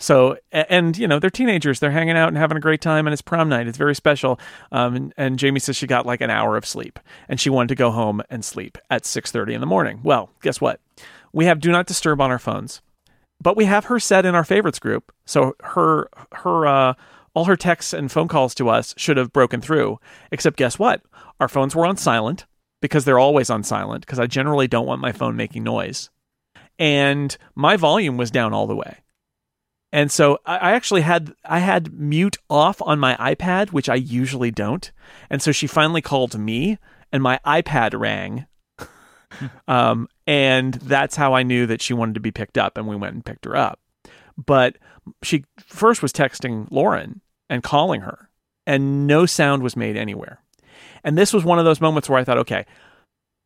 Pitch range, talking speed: 125-165 Hz, 205 wpm